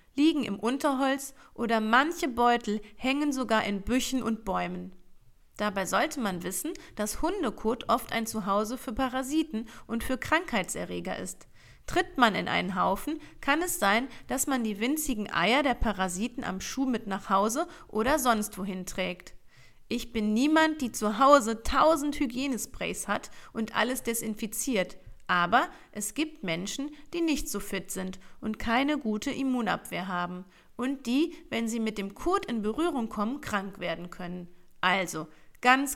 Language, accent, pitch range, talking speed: German, German, 195-275 Hz, 155 wpm